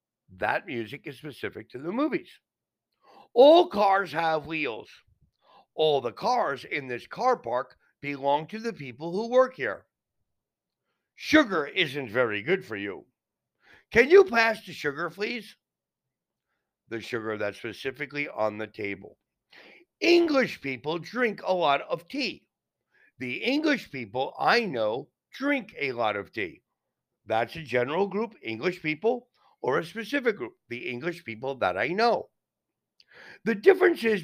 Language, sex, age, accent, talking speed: Spanish, male, 60-79, American, 140 wpm